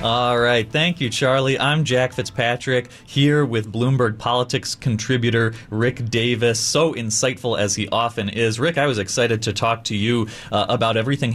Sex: male